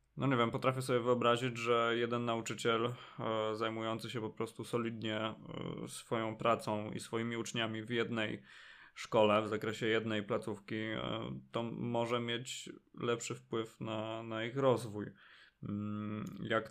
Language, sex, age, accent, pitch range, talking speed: Polish, male, 20-39, native, 110-130 Hz, 130 wpm